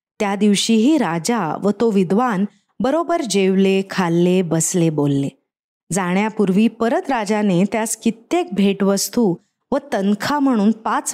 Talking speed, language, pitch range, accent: 115 wpm, Marathi, 190-255 Hz, native